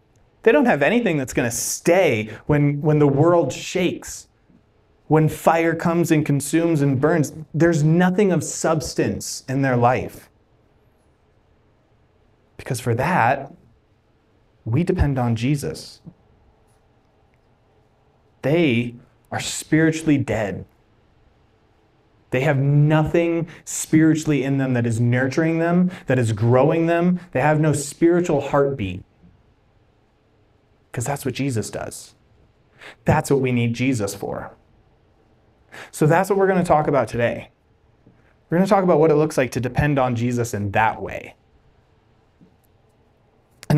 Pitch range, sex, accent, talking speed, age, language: 110-155 Hz, male, American, 125 wpm, 20-39, English